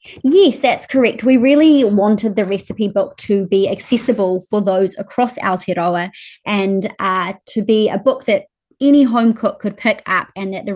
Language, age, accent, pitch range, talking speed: English, 20-39, Australian, 190-215 Hz, 180 wpm